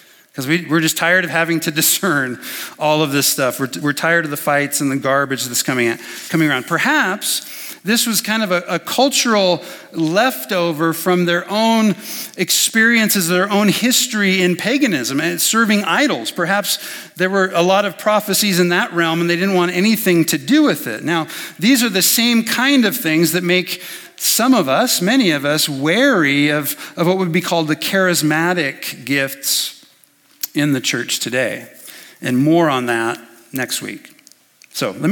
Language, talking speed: English, 180 wpm